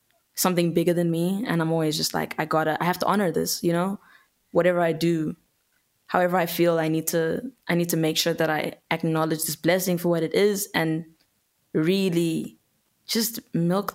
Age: 20-39